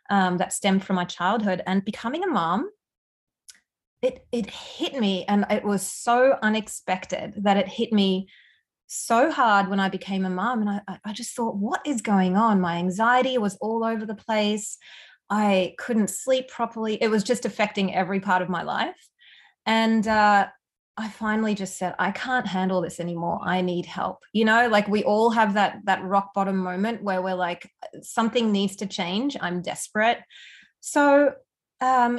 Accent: Australian